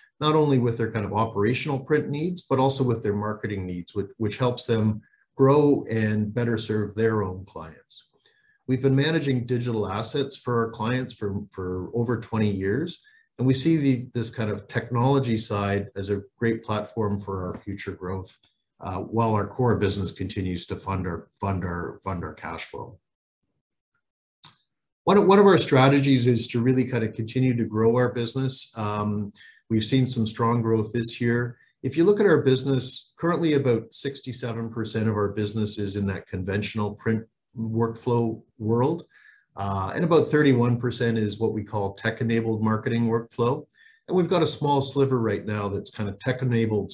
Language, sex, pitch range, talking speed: English, male, 105-130 Hz, 175 wpm